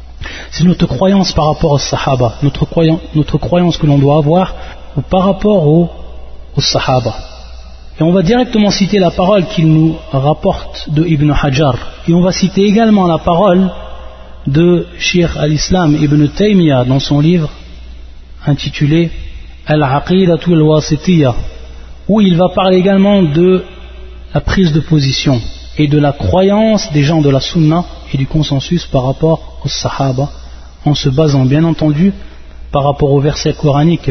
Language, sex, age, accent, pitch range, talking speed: French, male, 30-49, French, 130-175 Hz, 150 wpm